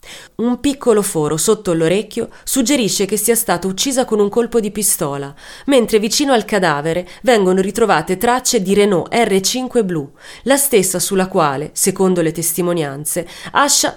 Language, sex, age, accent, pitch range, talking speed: Italian, female, 30-49, native, 170-240 Hz, 145 wpm